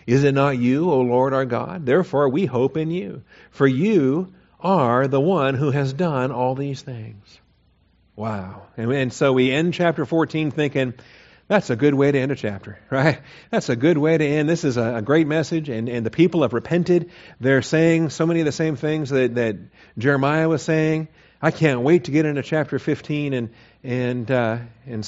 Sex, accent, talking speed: male, American, 205 wpm